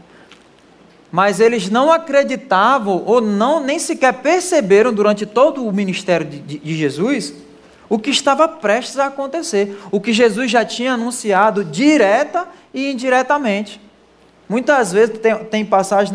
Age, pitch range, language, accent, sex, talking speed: 20-39, 195-245 Hz, Portuguese, Brazilian, male, 135 wpm